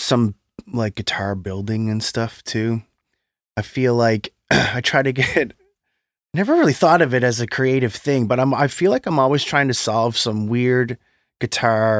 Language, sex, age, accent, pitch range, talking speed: English, male, 20-39, American, 105-130 Hz, 180 wpm